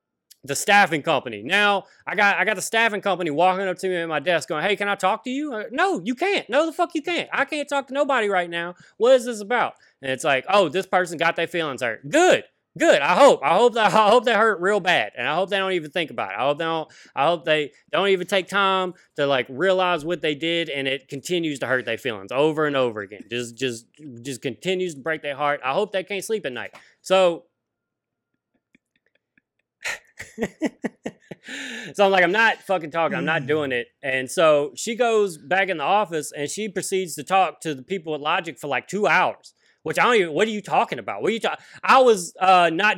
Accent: American